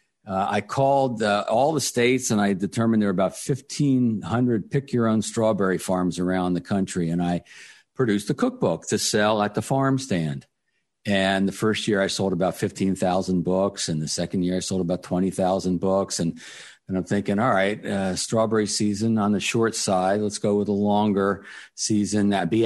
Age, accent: 50-69, American